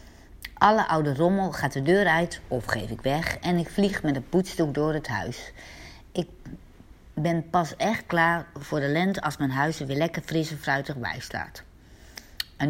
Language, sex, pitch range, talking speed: Dutch, female, 135-180 Hz, 190 wpm